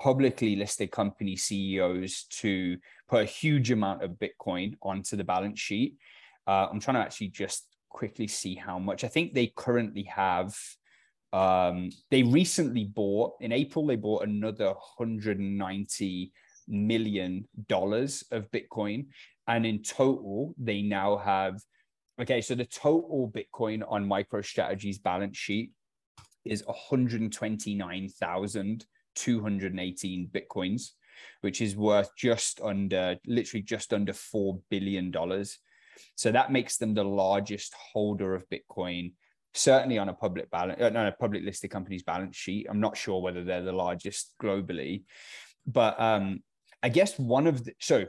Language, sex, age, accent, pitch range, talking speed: English, male, 20-39, British, 95-115 Hz, 135 wpm